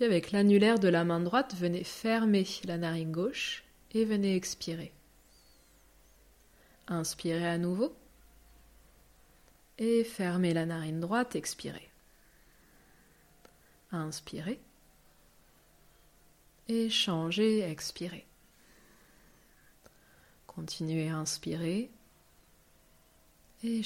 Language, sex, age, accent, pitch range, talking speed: French, female, 30-49, French, 165-200 Hz, 75 wpm